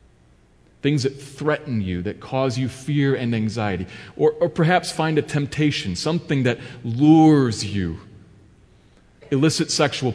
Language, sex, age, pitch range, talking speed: English, male, 40-59, 110-150 Hz, 130 wpm